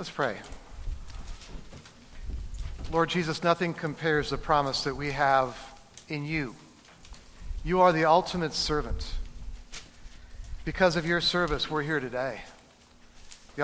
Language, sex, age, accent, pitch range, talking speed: English, male, 50-69, American, 135-165 Hz, 115 wpm